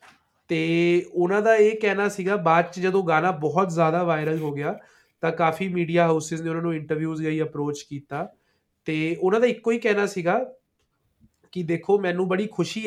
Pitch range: 160-185 Hz